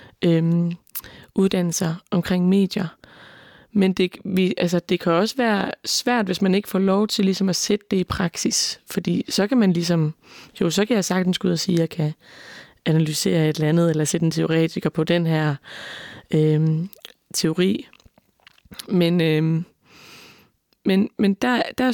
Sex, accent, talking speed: female, native, 165 wpm